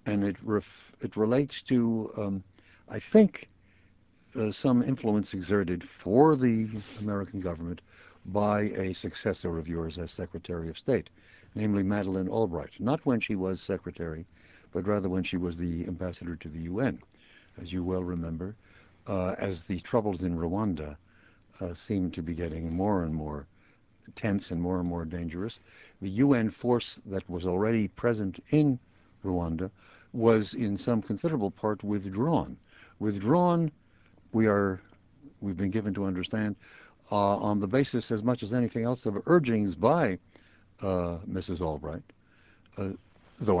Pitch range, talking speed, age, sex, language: 90-115 Hz, 150 wpm, 60-79, male, English